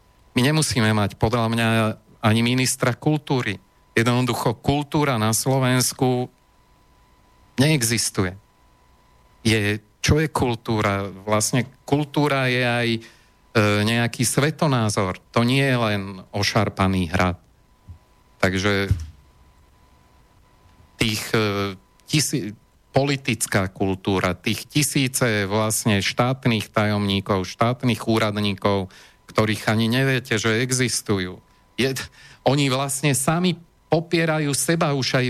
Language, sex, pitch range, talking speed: Slovak, male, 105-135 Hz, 95 wpm